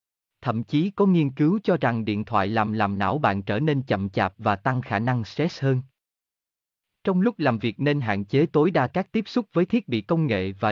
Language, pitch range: Vietnamese, 105-155 Hz